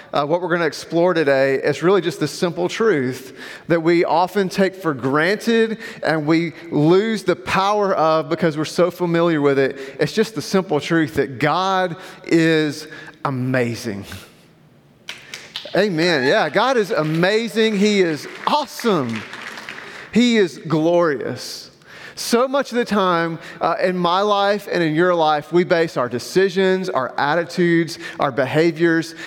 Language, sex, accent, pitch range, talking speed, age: English, male, American, 150-185 Hz, 150 wpm, 40-59